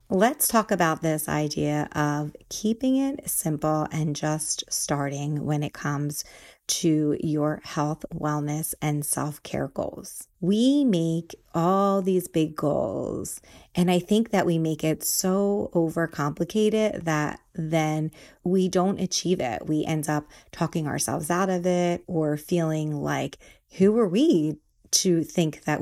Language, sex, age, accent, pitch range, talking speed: English, female, 30-49, American, 155-180 Hz, 140 wpm